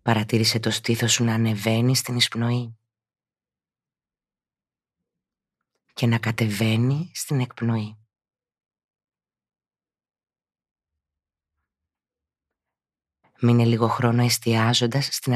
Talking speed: 65 wpm